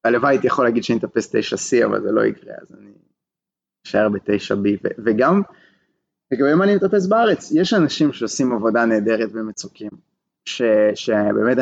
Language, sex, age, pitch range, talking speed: Hebrew, male, 20-39, 110-130 Hz, 155 wpm